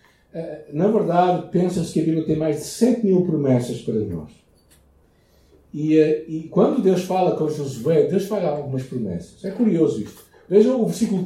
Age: 60-79